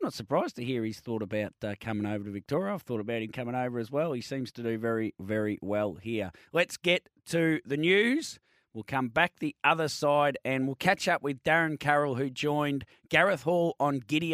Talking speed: 220 wpm